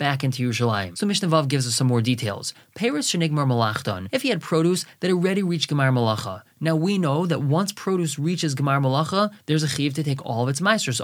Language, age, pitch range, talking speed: English, 20-39, 130-170 Hz, 205 wpm